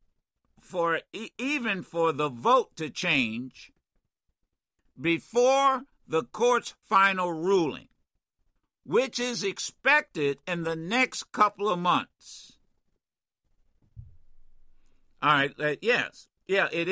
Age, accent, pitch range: 60-79, American, 130-220 Hz